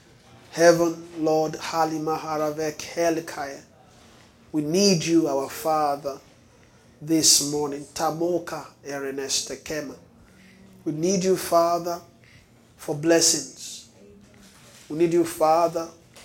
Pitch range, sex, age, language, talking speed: 135-170 Hz, male, 30-49, English, 70 wpm